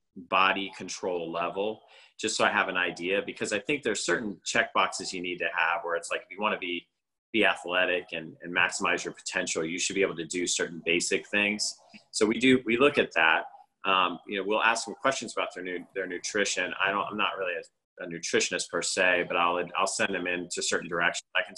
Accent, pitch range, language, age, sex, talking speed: American, 85-95 Hz, English, 30-49, male, 230 wpm